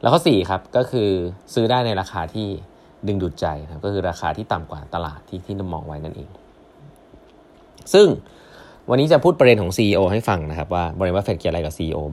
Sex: male